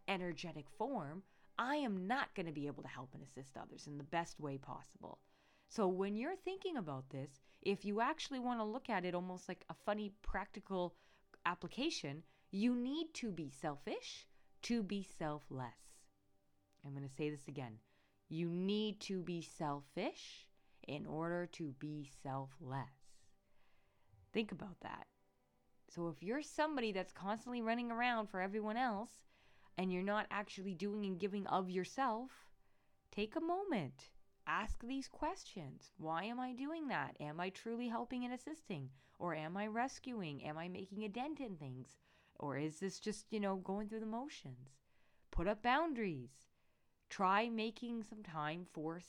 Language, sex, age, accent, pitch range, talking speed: English, female, 20-39, American, 150-225 Hz, 160 wpm